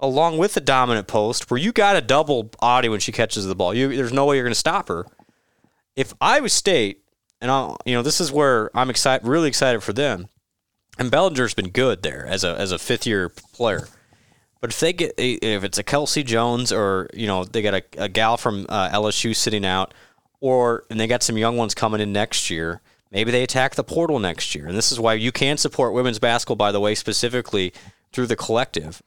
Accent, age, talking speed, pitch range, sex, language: American, 30-49, 230 wpm, 105-135 Hz, male, English